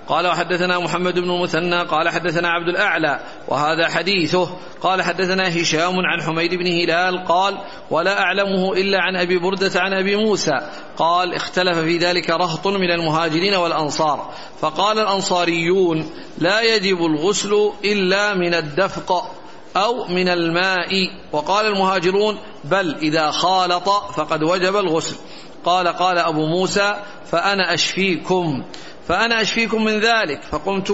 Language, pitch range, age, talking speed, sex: Arabic, 165-195 Hz, 50-69, 130 wpm, male